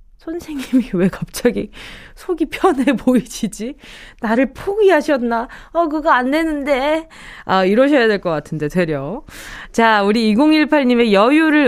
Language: Korean